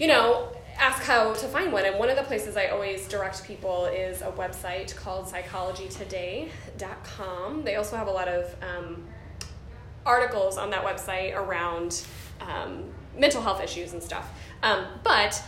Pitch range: 180-220 Hz